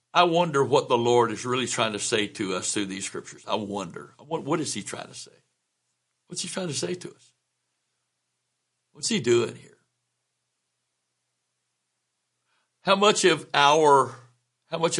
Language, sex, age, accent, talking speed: English, male, 60-79, American, 165 wpm